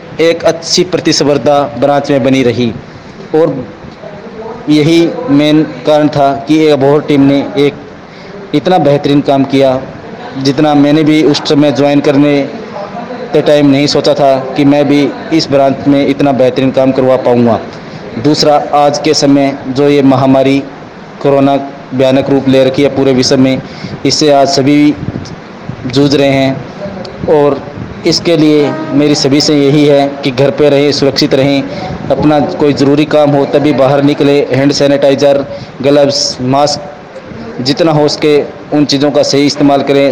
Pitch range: 135-150 Hz